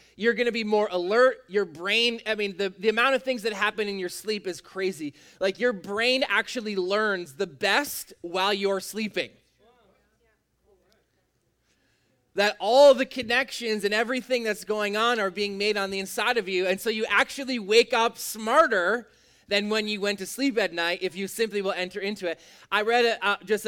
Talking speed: 195 wpm